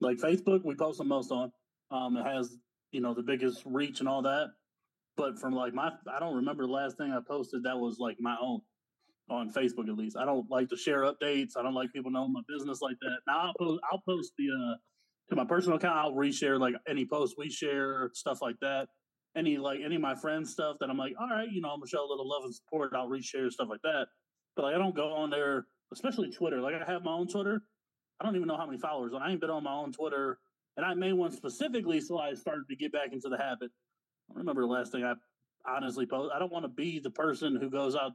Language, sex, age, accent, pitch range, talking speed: English, male, 30-49, American, 130-170 Hz, 255 wpm